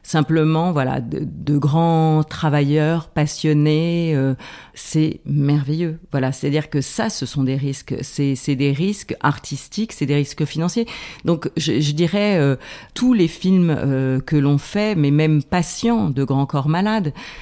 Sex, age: female, 40-59